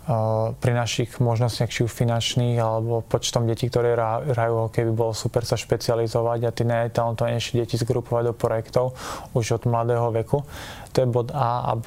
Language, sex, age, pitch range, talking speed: Slovak, male, 20-39, 115-120 Hz, 175 wpm